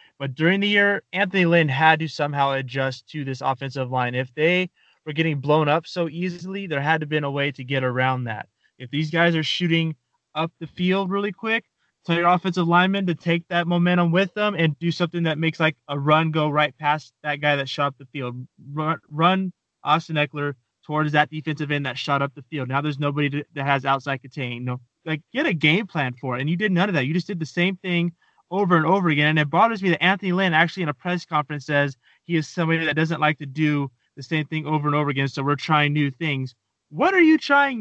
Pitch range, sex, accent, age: 145-180 Hz, male, American, 20-39